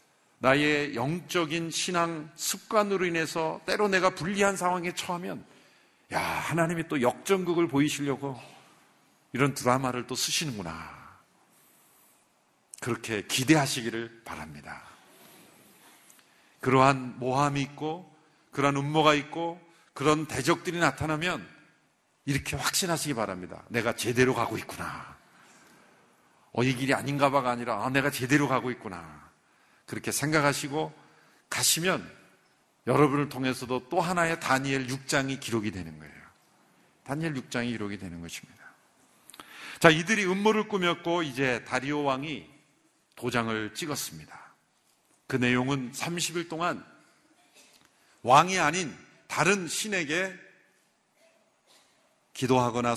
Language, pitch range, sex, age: Korean, 120-165 Hz, male, 50-69